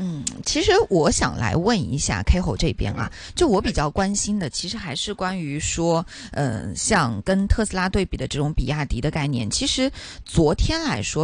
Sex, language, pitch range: female, Chinese, 150-205 Hz